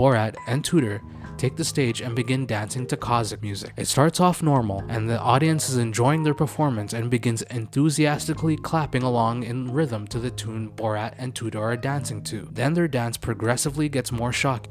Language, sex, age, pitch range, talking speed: English, male, 20-39, 110-145 Hz, 190 wpm